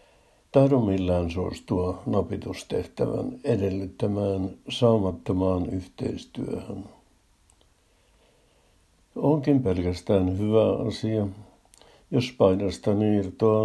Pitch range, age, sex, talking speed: 95-110 Hz, 60-79, male, 60 wpm